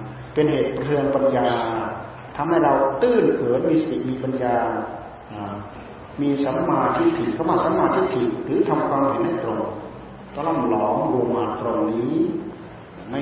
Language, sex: Thai, male